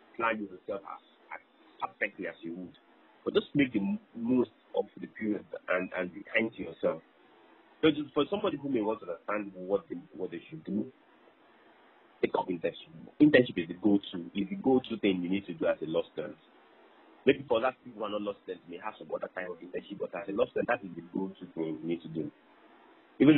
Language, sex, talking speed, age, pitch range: English, male, 225 wpm, 30-49, 100-150 Hz